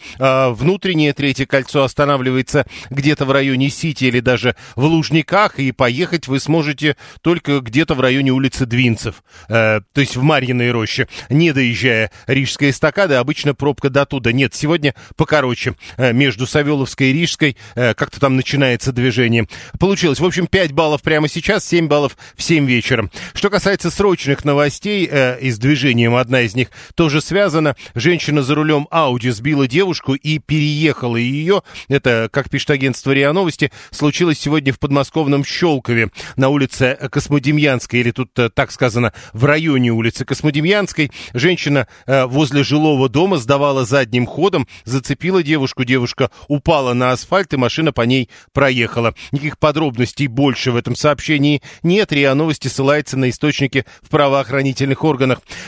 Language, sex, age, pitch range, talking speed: Russian, male, 40-59, 125-155 Hz, 150 wpm